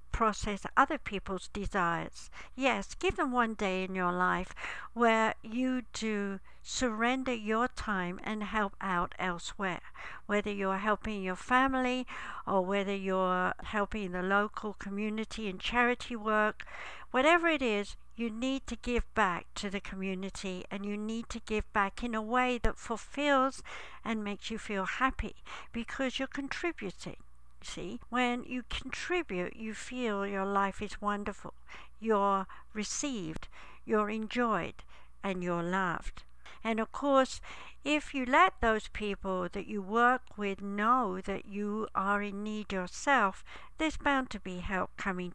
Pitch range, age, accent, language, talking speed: 190-240 Hz, 60-79, British, English, 145 wpm